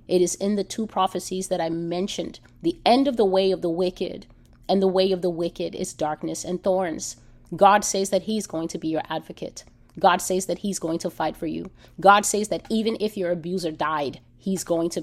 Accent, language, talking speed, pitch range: American, English, 225 wpm, 170-205 Hz